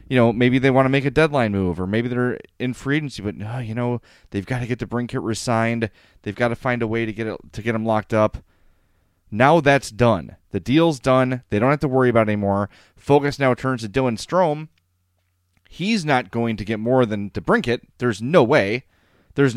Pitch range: 100-135 Hz